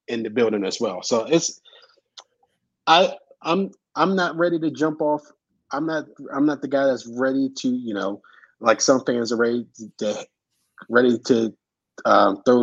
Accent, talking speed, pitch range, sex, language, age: American, 175 wpm, 110-135 Hz, male, English, 20-39